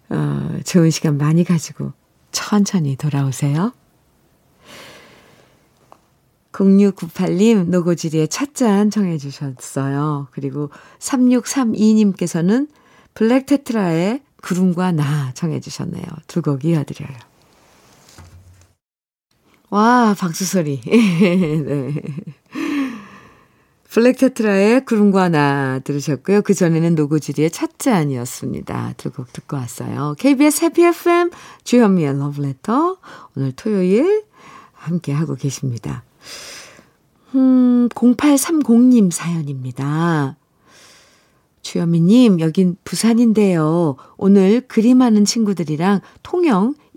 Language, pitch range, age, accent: Korean, 145-220 Hz, 50-69, native